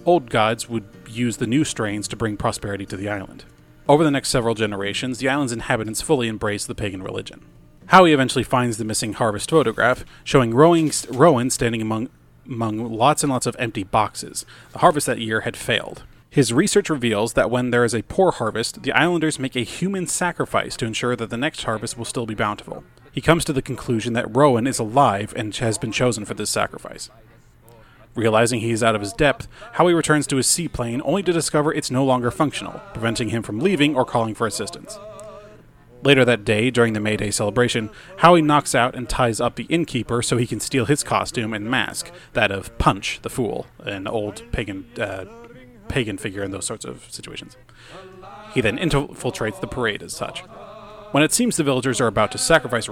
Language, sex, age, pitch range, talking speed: English, male, 30-49, 110-140 Hz, 200 wpm